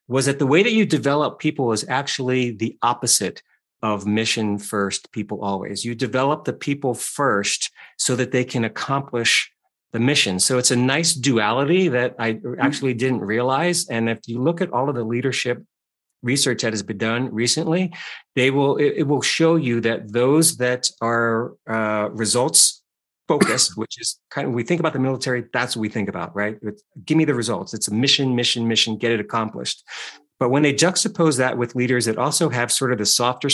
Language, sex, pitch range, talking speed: English, male, 110-135 Hz, 195 wpm